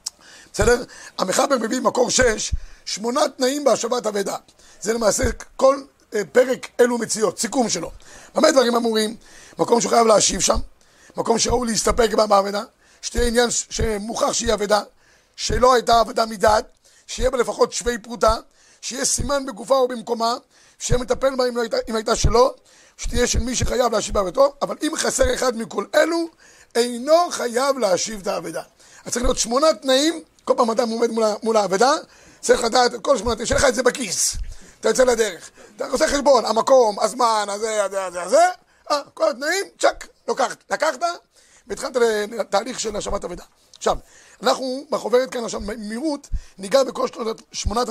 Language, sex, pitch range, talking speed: Hebrew, male, 220-270 Hz, 150 wpm